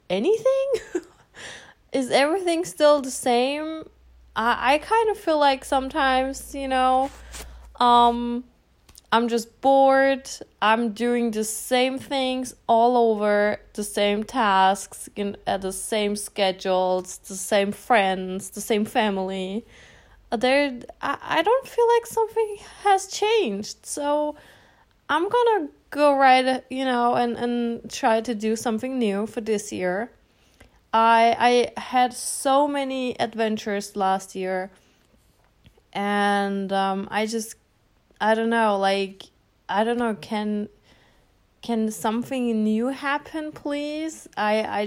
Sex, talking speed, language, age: female, 120 wpm, English, 20-39